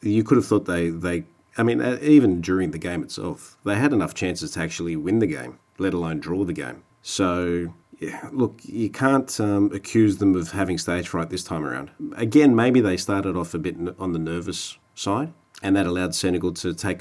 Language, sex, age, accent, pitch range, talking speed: English, male, 40-59, Australian, 85-105 Hz, 210 wpm